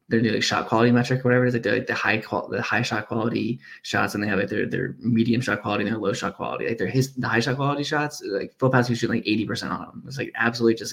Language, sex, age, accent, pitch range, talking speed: English, male, 20-39, American, 100-125 Hz, 295 wpm